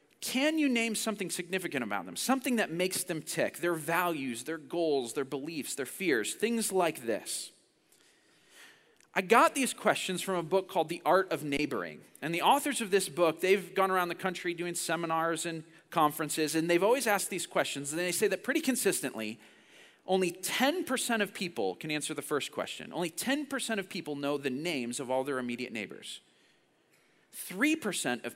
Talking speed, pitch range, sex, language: 180 wpm, 145-205 Hz, male, English